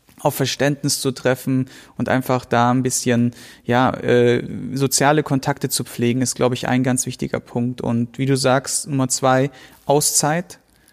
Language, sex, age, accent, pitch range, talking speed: German, male, 30-49, German, 125-140 Hz, 160 wpm